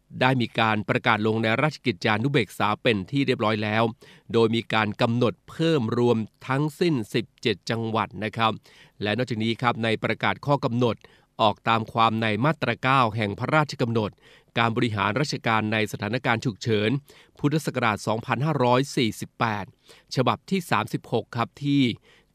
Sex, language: male, Thai